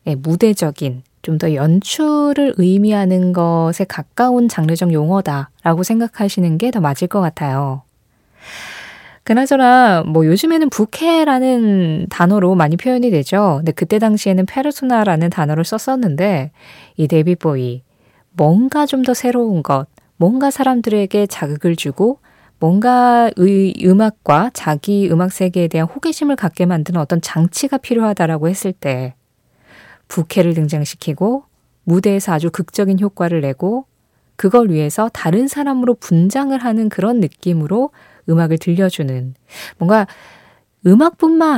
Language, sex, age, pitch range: Korean, female, 20-39, 160-235 Hz